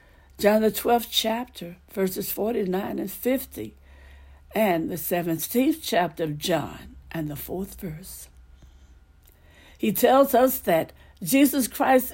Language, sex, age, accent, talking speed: English, female, 60-79, American, 120 wpm